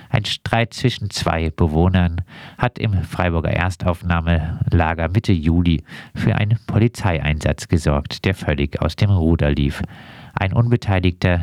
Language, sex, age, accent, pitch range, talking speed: German, male, 50-69, German, 80-105 Hz, 120 wpm